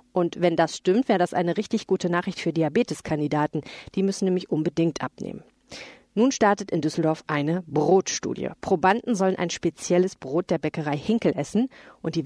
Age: 40-59